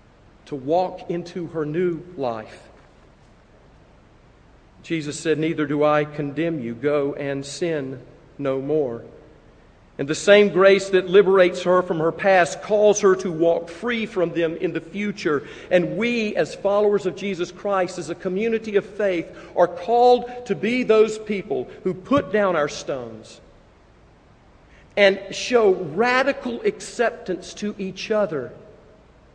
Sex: male